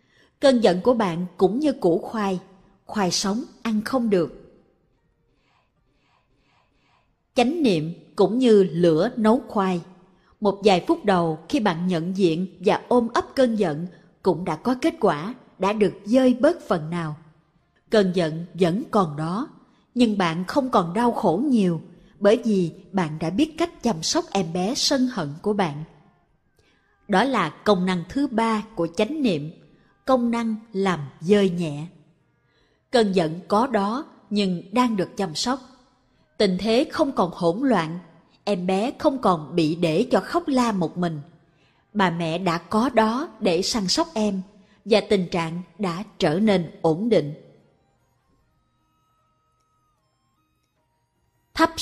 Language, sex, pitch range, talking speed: Vietnamese, female, 170-230 Hz, 150 wpm